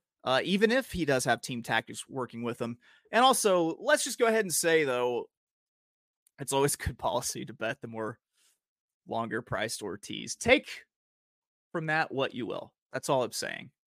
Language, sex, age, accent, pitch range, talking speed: English, male, 30-49, American, 120-175 Hz, 175 wpm